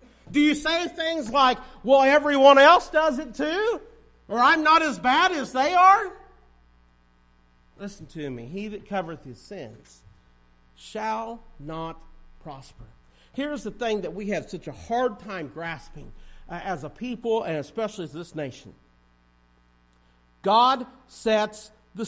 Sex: male